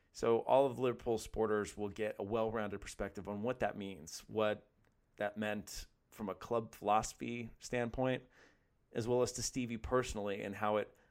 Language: English